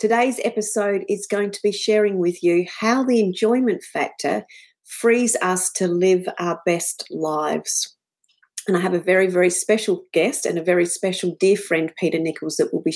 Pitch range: 175-220 Hz